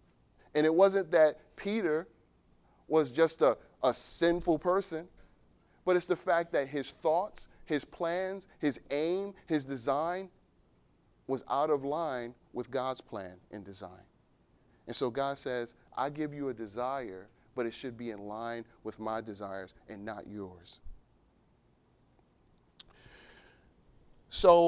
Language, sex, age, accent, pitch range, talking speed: English, male, 30-49, American, 115-165 Hz, 135 wpm